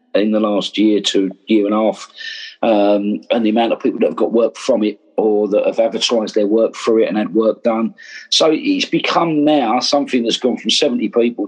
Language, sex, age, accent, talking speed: English, male, 40-59, British, 225 wpm